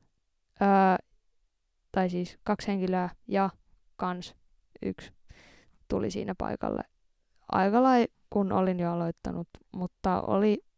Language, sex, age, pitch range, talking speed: Finnish, female, 20-39, 180-220 Hz, 105 wpm